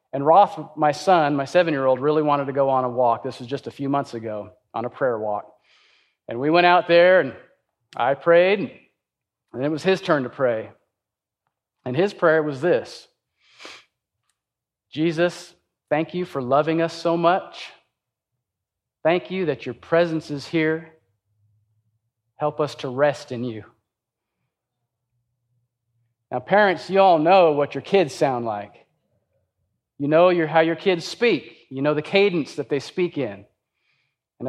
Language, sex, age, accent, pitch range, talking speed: English, male, 40-59, American, 130-165 Hz, 155 wpm